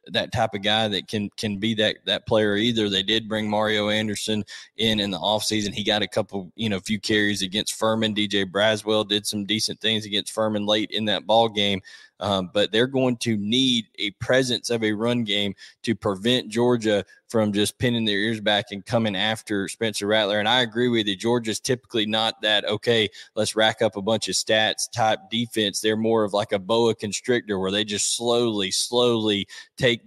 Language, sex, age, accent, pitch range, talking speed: English, male, 20-39, American, 100-110 Hz, 205 wpm